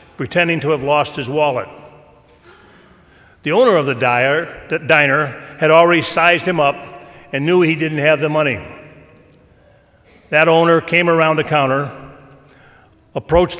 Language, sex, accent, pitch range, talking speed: English, male, American, 135-165 Hz, 135 wpm